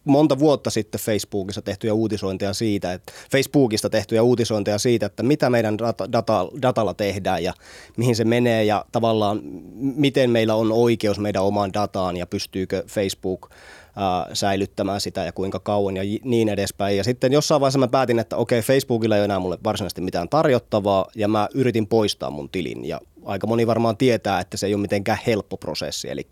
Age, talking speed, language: 20-39, 180 wpm, Finnish